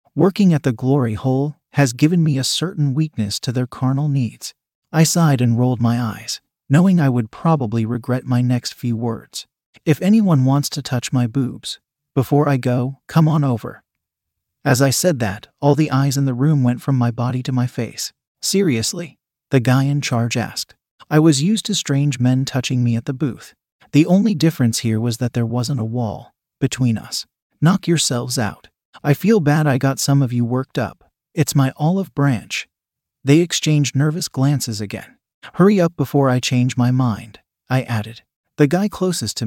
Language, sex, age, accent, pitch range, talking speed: English, male, 40-59, American, 120-150 Hz, 190 wpm